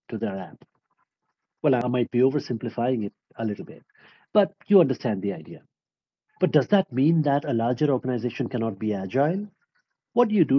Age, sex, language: 50-69, male, English